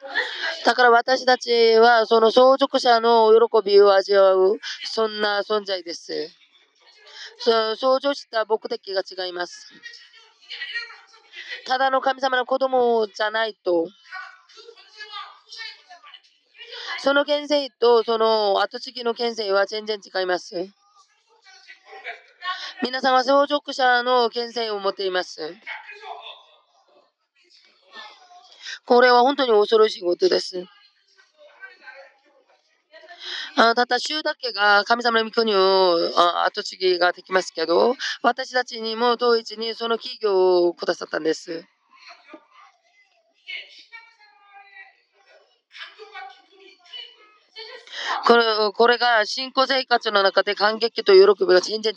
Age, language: 30-49, Japanese